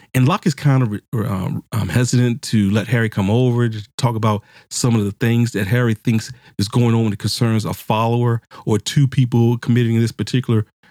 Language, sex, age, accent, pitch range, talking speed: English, male, 40-59, American, 110-130 Hz, 195 wpm